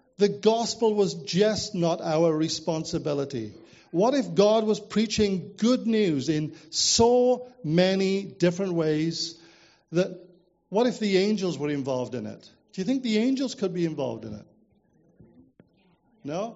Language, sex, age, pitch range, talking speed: English, male, 50-69, 155-215 Hz, 140 wpm